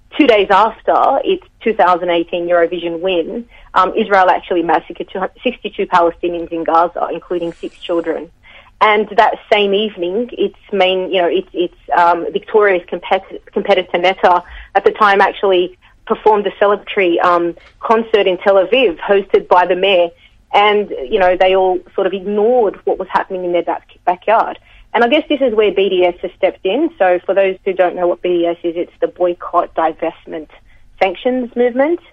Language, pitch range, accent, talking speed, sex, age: English, 175-220 Hz, Australian, 165 wpm, female, 30-49